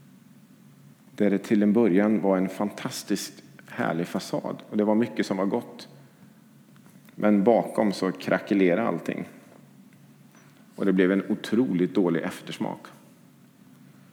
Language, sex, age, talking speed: English, male, 40-59, 125 wpm